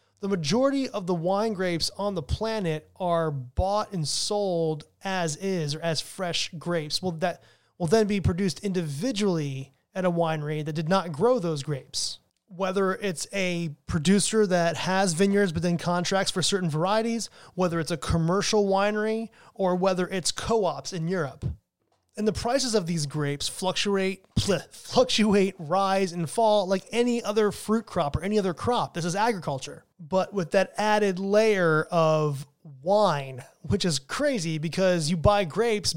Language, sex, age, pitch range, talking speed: English, male, 30-49, 165-205 Hz, 155 wpm